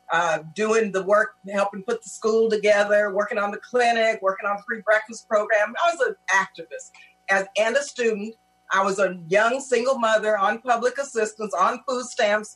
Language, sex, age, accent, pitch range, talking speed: English, female, 40-59, American, 195-245 Hz, 180 wpm